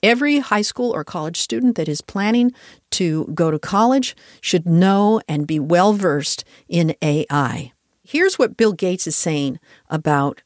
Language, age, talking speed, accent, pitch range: English, 50-69, 155 wpm, American, 155-220 Hz